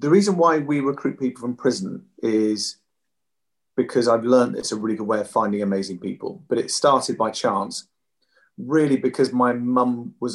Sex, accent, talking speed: male, British, 180 wpm